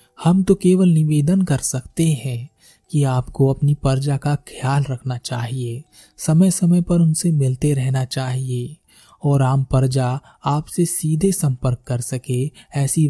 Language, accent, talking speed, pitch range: Hindi, native, 140 wpm, 130-160 Hz